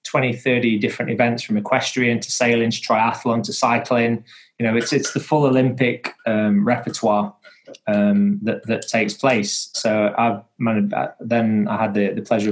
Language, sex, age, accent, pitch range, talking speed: English, male, 20-39, British, 105-120 Hz, 170 wpm